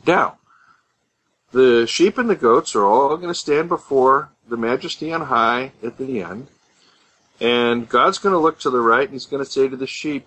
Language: English